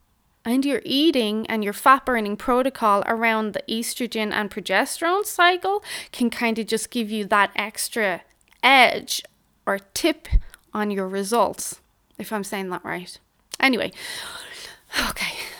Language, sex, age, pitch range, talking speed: English, female, 20-39, 210-285 Hz, 135 wpm